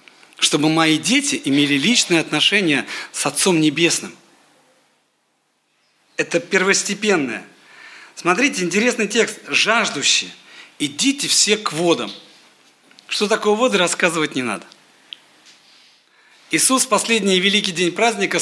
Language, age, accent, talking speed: Russian, 50-69, native, 100 wpm